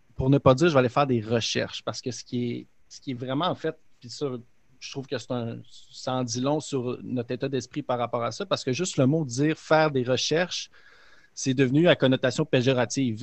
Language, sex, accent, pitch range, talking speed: French, male, Canadian, 125-150 Hz, 255 wpm